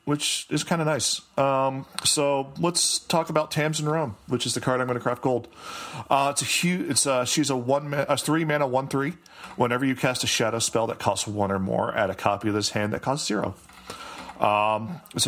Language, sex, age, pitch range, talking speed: English, male, 40-59, 105-135 Hz, 230 wpm